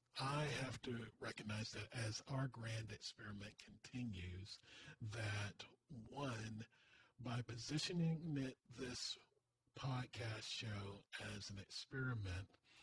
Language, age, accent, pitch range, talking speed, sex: English, 40-59, American, 105-130 Hz, 95 wpm, male